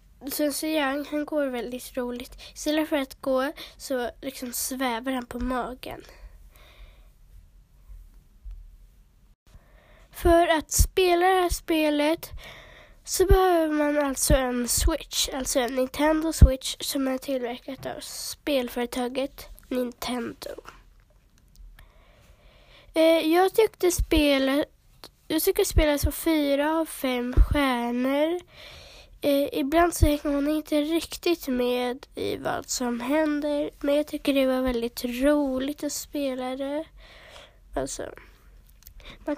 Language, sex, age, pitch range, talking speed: Swedish, female, 20-39, 260-315 Hz, 110 wpm